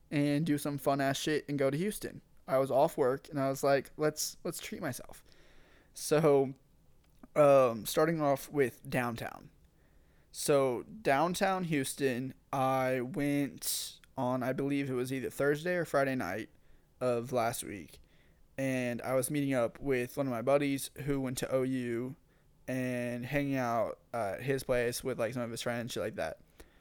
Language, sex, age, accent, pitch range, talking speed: English, male, 20-39, American, 130-145 Hz, 165 wpm